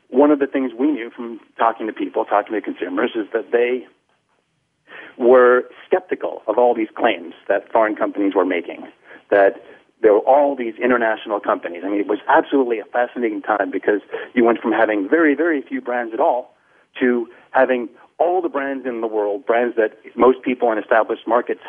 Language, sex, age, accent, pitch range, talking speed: English, male, 40-59, American, 115-160 Hz, 190 wpm